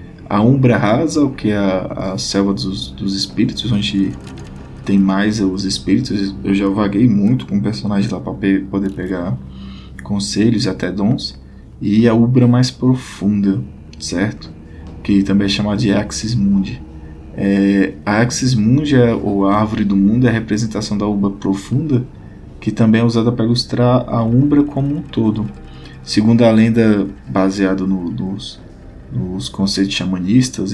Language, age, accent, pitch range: Portuguese, 20-39, Brazilian, 95-110 Hz